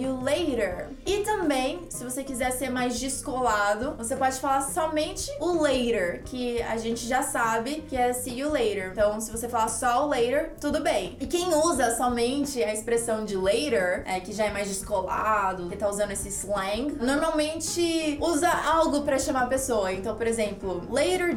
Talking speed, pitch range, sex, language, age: 185 wpm, 215-290 Hz, female, Portuguese, 20-39